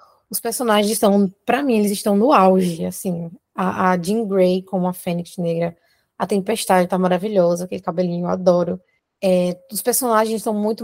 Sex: female